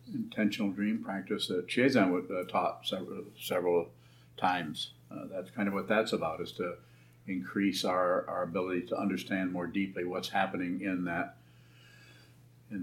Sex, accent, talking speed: male, American, 150 wpm